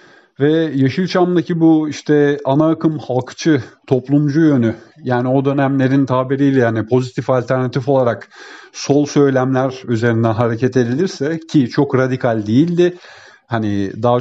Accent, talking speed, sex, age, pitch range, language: native, 120 wpm, male, 50-69, 120-145 Hz, Turkish